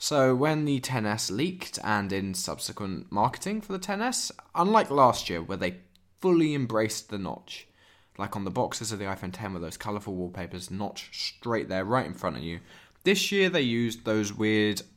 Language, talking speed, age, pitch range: English, 190 wpm, 20-39, 105-145 Hz